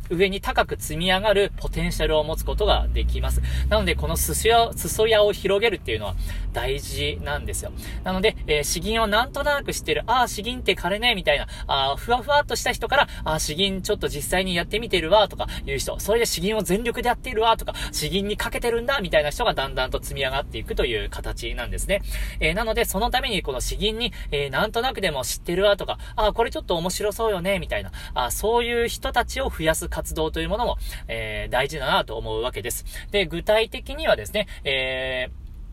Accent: native